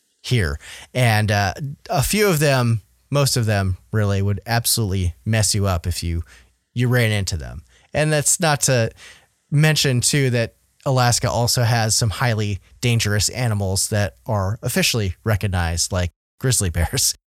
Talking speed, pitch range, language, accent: 150 wpm, 95-125 Hz, English, American